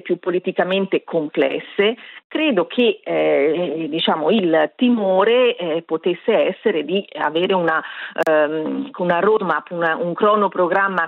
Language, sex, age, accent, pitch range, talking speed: Italian, female, 40-59, native, 160-190 Hz, 115 wpm